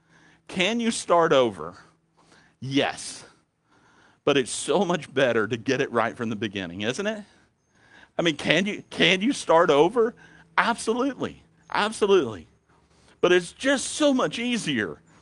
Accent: American